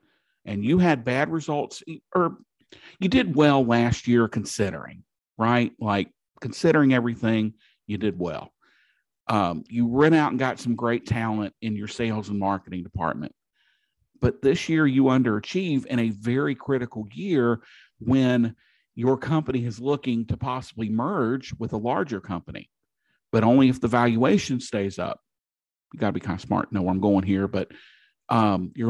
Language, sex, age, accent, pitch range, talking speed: English, male, 50-69, American, 105-130 Hz, 160 wpm